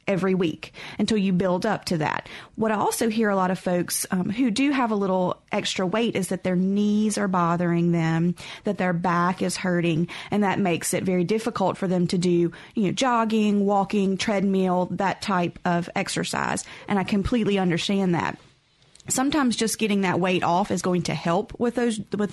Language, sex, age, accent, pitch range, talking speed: English, female, 30-49, American, 180-205 Hz, 195 wpm